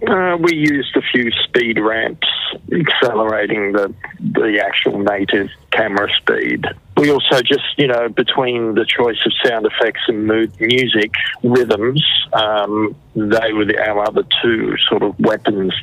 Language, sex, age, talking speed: English, male, 50-69, 150 wpm